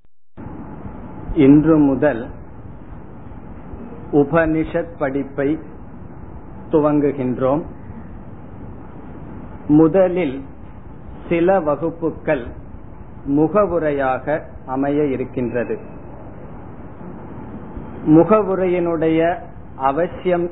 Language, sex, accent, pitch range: Tamil, male, native, 140-175 Hz